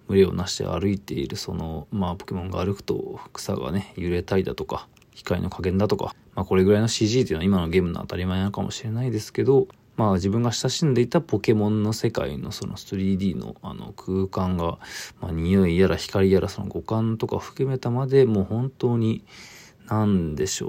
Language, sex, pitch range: Japanese, male, 95-125 Hz